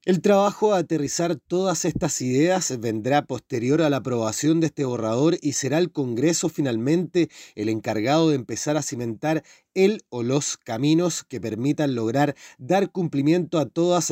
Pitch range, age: 125-170 Hz, 30-49